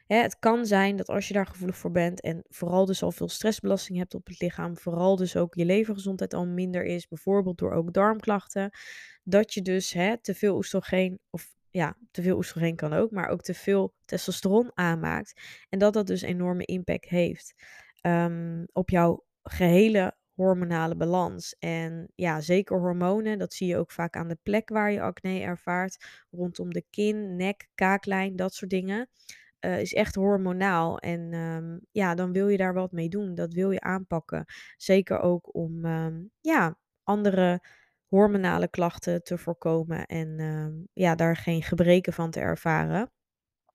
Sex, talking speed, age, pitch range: female, 170 wpm, 20-39, 170-195 Hz